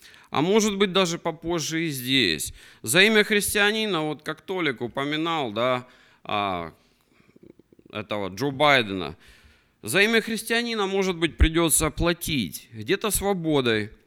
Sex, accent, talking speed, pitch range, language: male, native, 115 wpm, 150-200 Hz, Russian